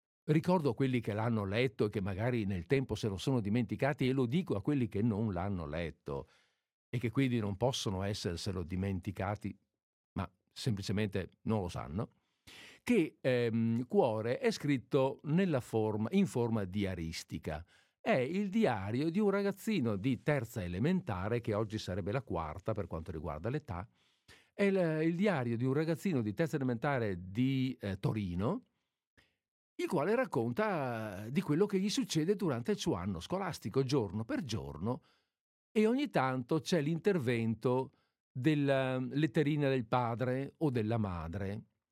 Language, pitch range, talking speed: Italian, 105-150 Hz, 145 wpm